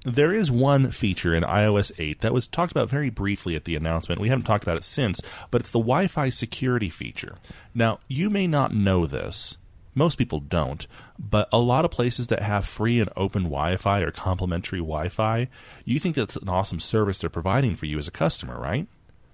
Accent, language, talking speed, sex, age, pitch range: American, English, 200 wpm, male, 30-49, 85-120 Hz